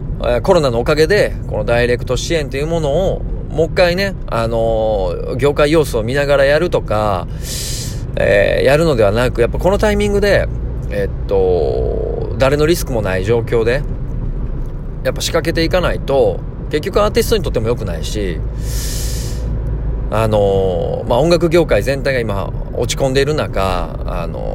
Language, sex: Japanese, male